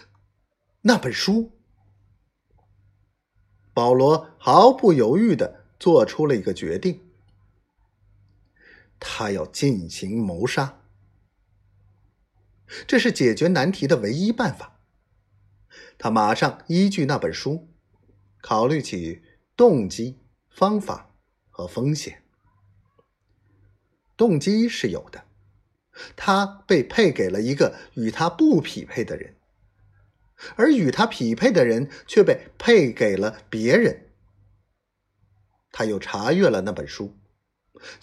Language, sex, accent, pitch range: Chinese, male, native, 100-150 Hz